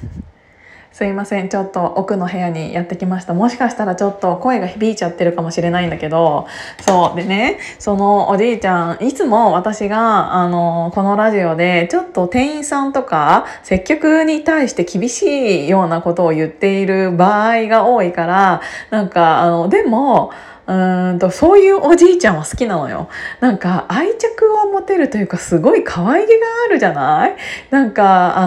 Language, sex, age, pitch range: Japanese, female, 20-39, 180-260 Hz